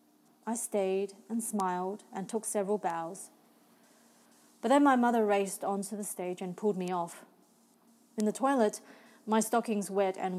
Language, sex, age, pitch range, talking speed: English, female, 30-49, 185-225 Hz, 155 wpm